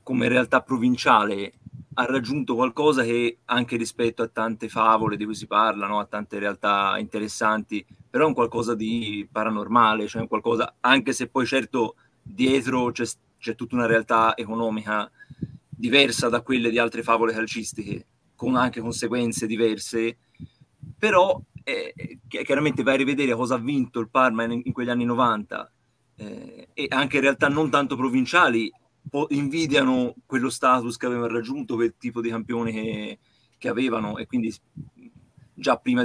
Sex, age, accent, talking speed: male, 30-49, native, 155 wpm